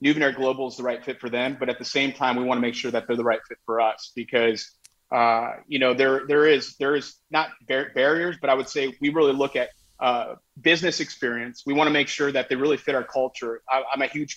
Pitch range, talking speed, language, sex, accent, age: 120-145 Hz, 265 wpm, English, male, American, 30-49